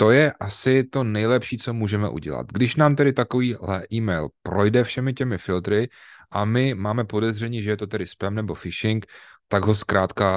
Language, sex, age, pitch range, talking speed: Czech, male, 30-49, 100-120 Hz, 180 wpm